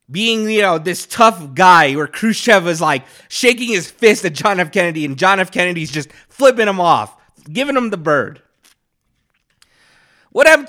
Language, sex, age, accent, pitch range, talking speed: English, male, 30-49, American, 170-225 Hz, 175 wpm